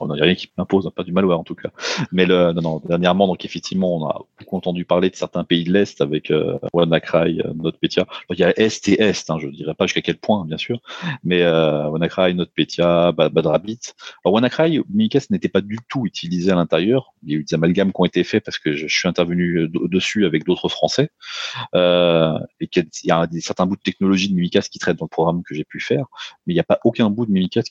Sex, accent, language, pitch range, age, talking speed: male, French, French, 85-100 Hz, 30-49, 250 wpm